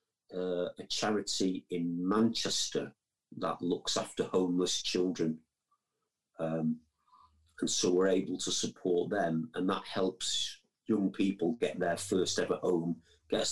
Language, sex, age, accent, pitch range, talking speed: Finnish, male, 40-59, British, 90-110 Hz, 130 wpm